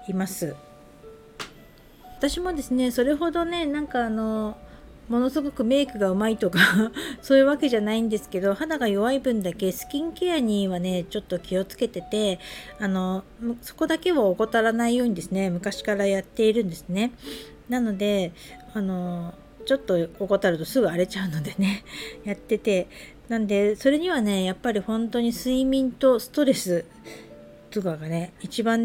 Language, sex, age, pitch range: Japanese, female, 50-69, 190-245 Hz